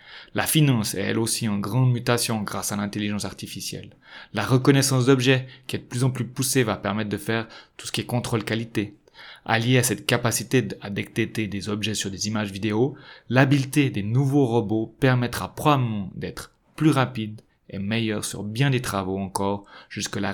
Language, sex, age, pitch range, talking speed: French, male, 30-49, 105-130 Hz, 180 wpm